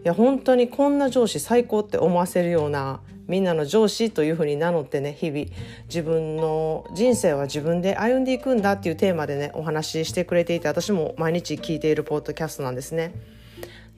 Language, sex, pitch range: Japanese, female, 145-205 Hz